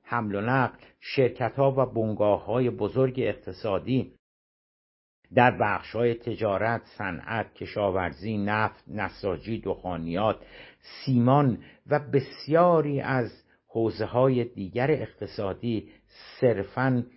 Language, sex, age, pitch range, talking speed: Persian, male, 60-79, 100-130 Hz, 85 wpm